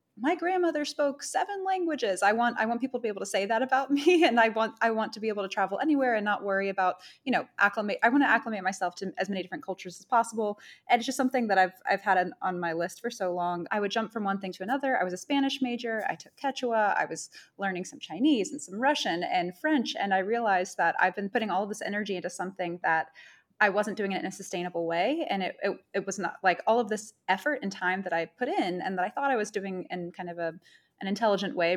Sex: female